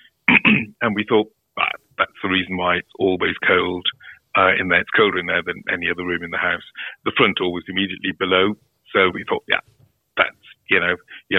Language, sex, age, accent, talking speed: English, male, 50-69, British, 205 wpm